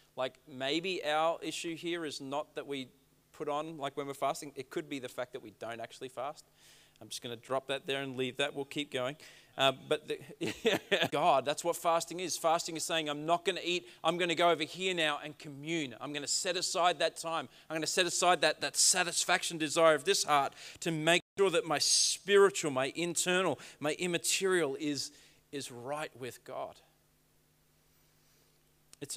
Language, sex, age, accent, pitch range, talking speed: English, male, 30-49, Australian, 135-165 Hz, 200 wpm